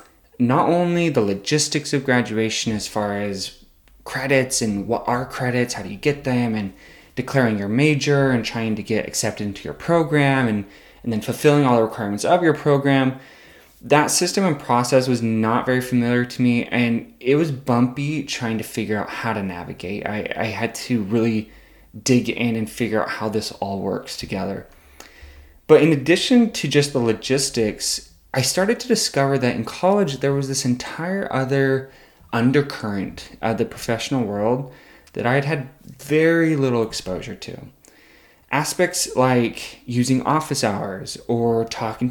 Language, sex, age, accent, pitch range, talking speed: English, male, 20-39, American, 110-145 Hz, 165 wpm